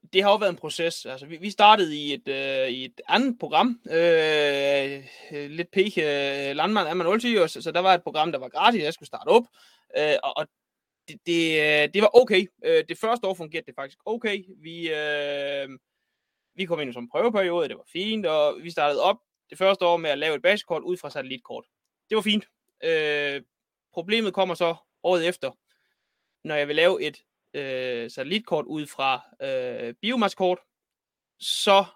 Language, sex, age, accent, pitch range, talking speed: Danish, male, 20-39, native, 145-205 Hz, 175 wpm